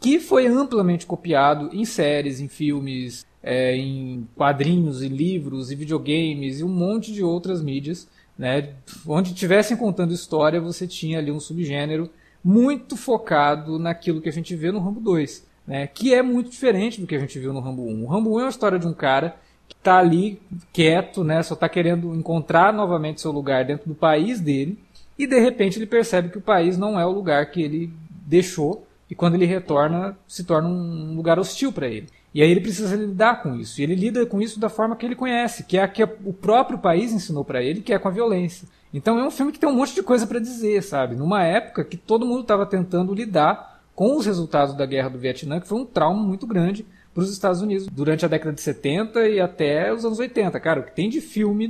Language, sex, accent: Portuguese, male, Brazilian